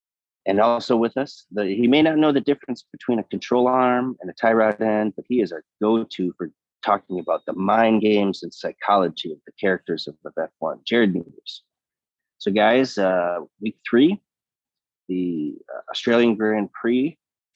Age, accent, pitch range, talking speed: 30-49, American, 95-125 Hz, 175 wpm